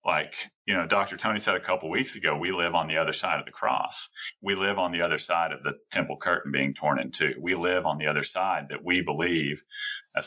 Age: 30-49